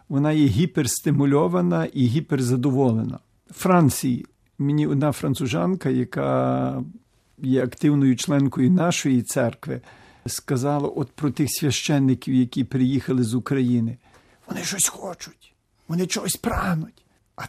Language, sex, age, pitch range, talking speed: Ukrainian, male, 50-69, 130-175 Hz, 110 wpm